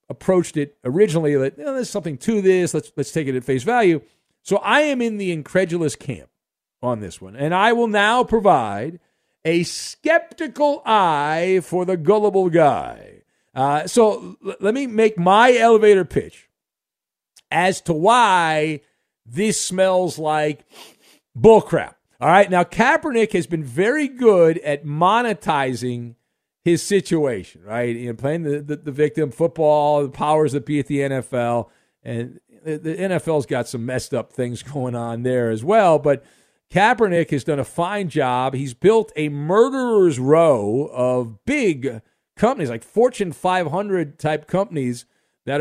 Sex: male